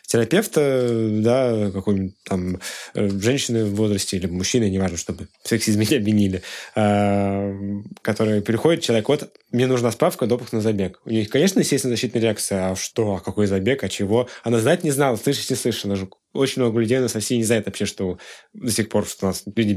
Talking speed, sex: 190 wpm, male